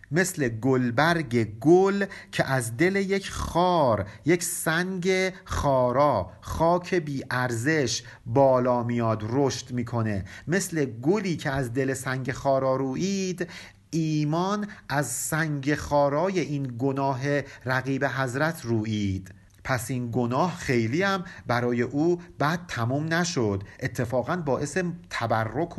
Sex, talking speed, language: male, 110 wpm, Persian